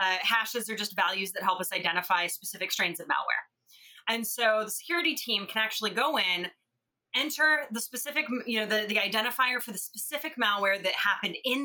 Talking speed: 190 wpm